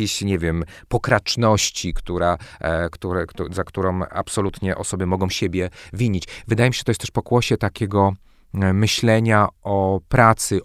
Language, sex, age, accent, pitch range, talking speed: Polish, male, 30-49, native, 85-105 Hz, 130 wpm